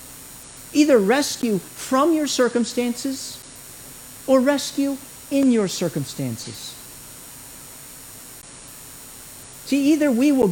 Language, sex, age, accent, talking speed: English, male, 50-69, American, 80 wpm